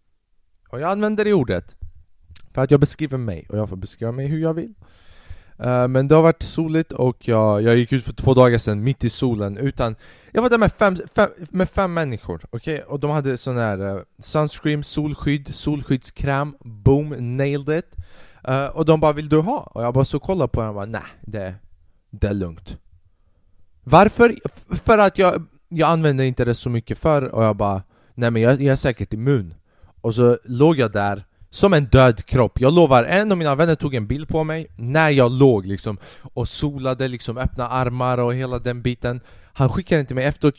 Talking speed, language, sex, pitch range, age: 205 wpm, Swedish, male, 105-145 Hz, 20-39